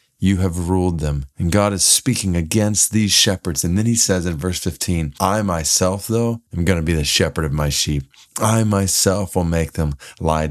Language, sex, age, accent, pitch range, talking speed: English, male, 30-49, American, 85-110 Hz, 205 wpm